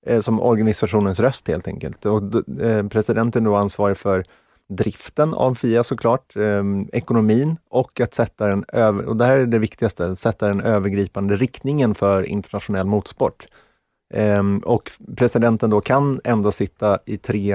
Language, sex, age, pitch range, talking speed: Swedish, male, 30-49, 100-115 Hz, 155 wpm